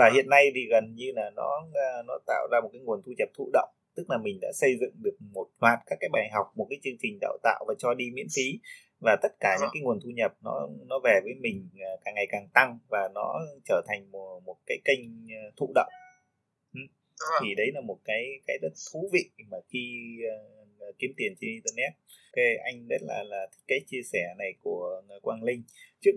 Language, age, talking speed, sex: Vietnamese, 20-39, 220 wpm, male